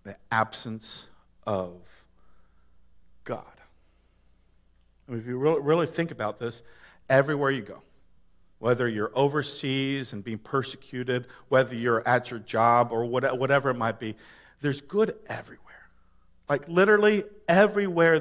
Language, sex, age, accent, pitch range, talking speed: English, male, 50-69, American, 105-150 Hz, 120 wpm